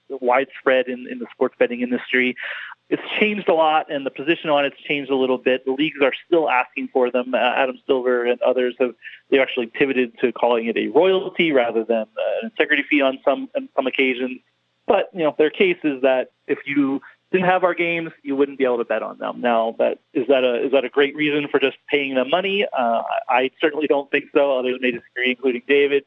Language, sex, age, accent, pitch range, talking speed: English, male, 30-49, American, 125-150 Hz, 230 wpm